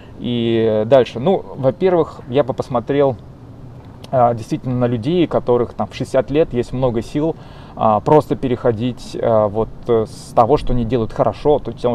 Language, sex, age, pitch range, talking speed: Russian, male, 20-39, 115-135 Hz, 145 wpm